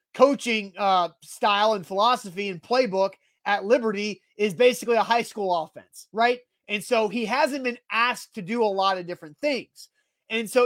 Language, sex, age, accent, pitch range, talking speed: English, male, 30-49, American, 195-250 Hz, 175 wpm